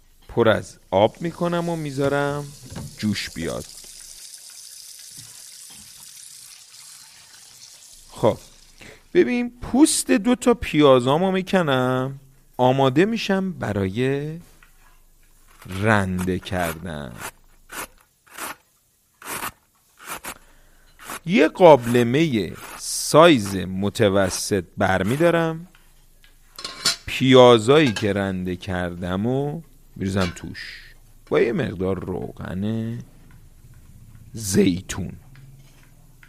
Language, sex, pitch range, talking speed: Persian, male, 100-145 Hz, 60 wpm